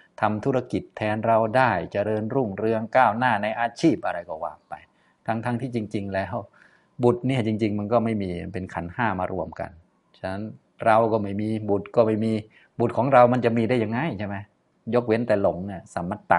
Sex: male